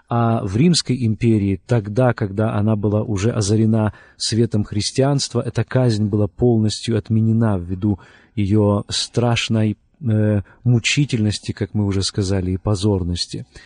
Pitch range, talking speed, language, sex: 105-125 Hz, 125 wpm, Russian, male